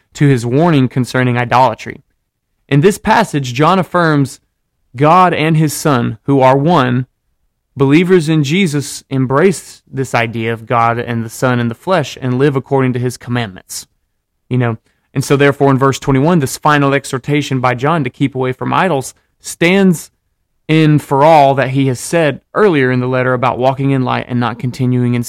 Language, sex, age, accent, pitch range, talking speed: English, male, 30-49, American, 125-155 Hz, 180 wpm